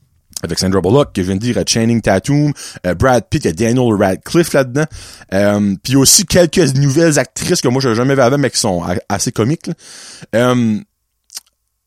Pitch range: 100-145 Hz